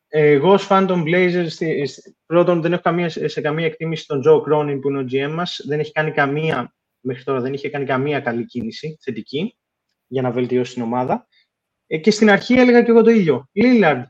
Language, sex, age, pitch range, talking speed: Greek, male, 20-39, 140-200 Hz, 190 wpm